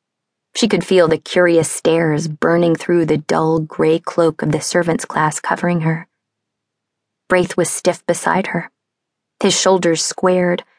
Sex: female